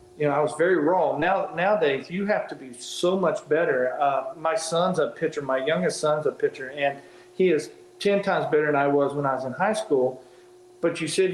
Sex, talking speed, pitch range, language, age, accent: male, 215 wpm, 145-185 Hz, English, 40-59, American